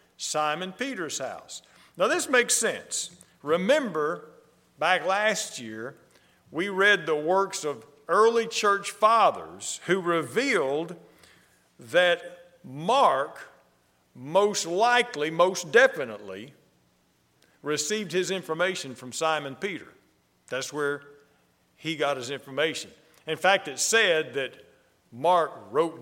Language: English